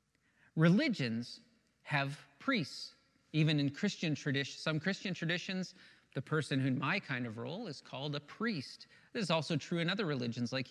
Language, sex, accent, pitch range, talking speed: English, male, American, 140-205 Hz, 170 wpm